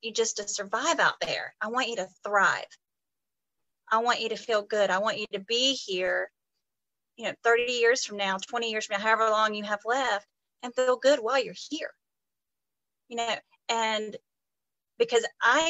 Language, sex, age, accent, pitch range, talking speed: English, female, 30-49, American, 205-250 Hz, 185 wpm